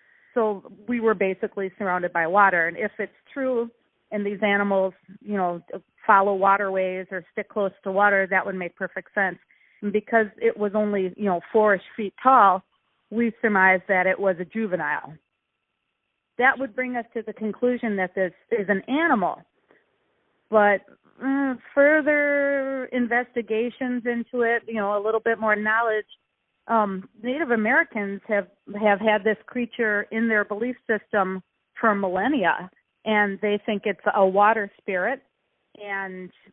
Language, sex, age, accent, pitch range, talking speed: English, female, 40-59, American, 195-230 Hz, 150 wpm